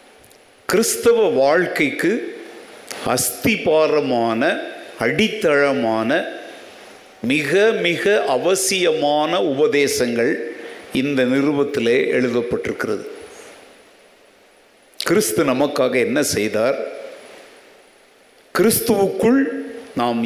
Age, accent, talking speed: 60-79, native, 50 wpm